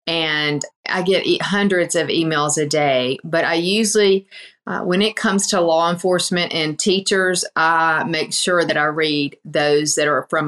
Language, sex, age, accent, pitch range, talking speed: English, female, 40-59, American, 150-185 Hz, 170 wpm